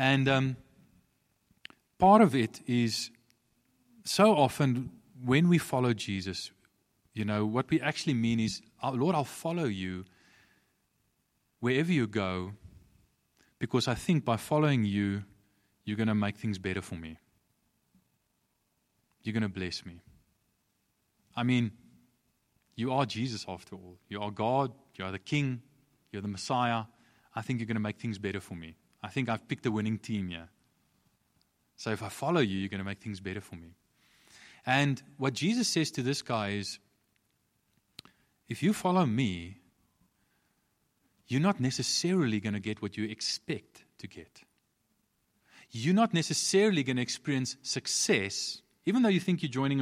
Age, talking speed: 20-39, 155 wpm